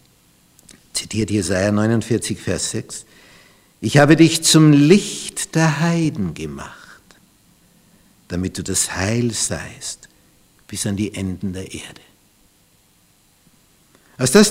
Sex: male